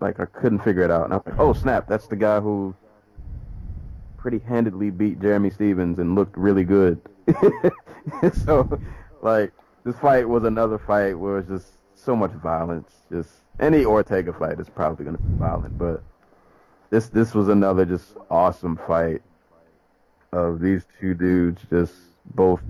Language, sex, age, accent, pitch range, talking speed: English, male, 30-49, American, 90-105 Hz, 165 wpm